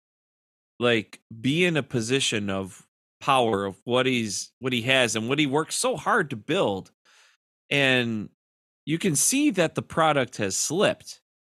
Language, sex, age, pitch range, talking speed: English, male, 30-49, 105-130 Hz, 160 wpm